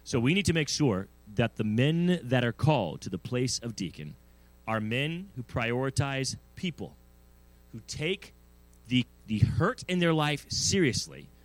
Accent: American